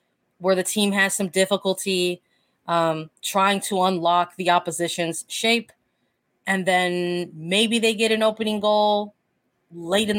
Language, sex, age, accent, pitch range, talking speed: English, female, 20-39, American, 175-220 Hz, 135 wpm